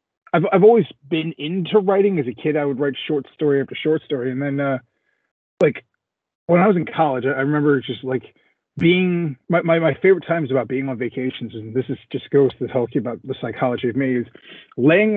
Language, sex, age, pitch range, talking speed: English, male, 30-49, 135-170 Hz, 220 wpm